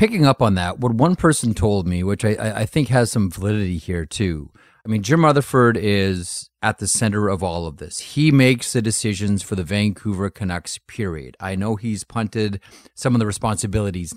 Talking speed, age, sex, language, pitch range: 200 wpm, 30-49, male, English, 95-125 Hz